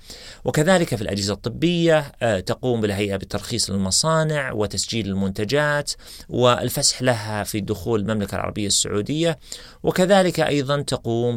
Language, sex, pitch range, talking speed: Arabic, male, 105-140 Hz, 105 wpm